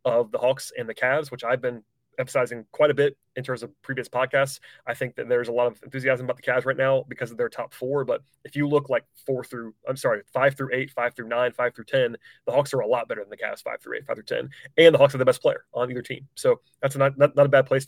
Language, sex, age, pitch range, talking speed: English, male, 30-49, 120-145 Hz, 295 wpm